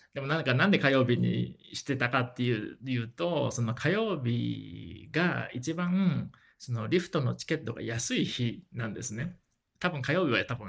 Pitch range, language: 115-145 Hz, Japanese